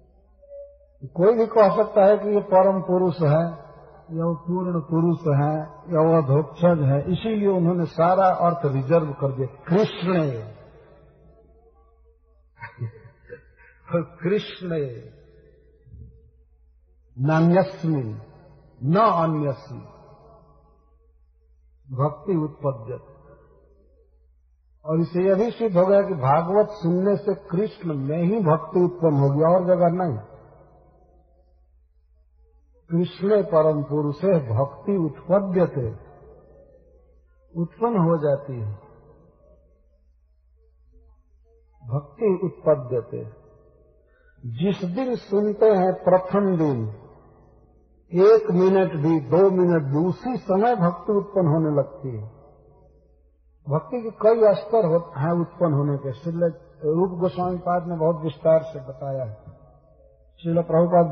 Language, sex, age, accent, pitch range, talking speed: Hindi, male, 50-69, native, 120-180 Hz, 100 wpm